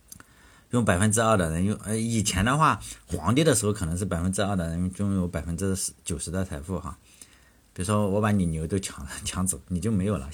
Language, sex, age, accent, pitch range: Chinese, male, 50-69, native, 90-115 Hz